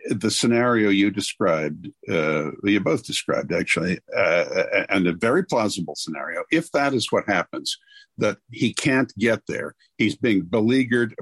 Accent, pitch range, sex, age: American, 100-130 Hz, male, 60-79